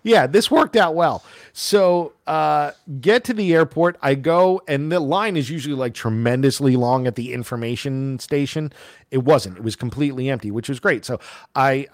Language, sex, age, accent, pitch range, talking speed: English, male, 40-59, American, 115-155 Hz, 180 wpm